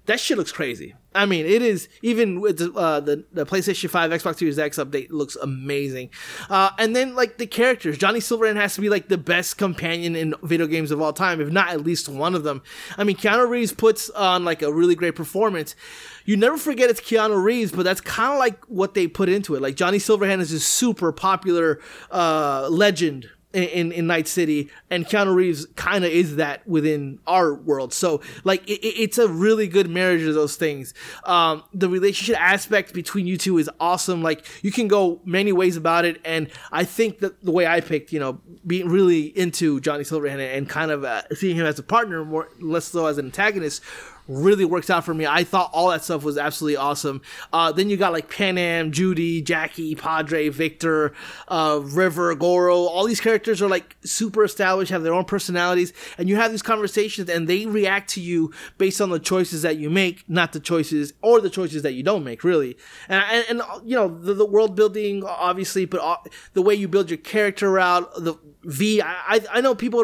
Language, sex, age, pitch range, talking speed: English, male, 30-49, 160-200 Hz, 215 wpm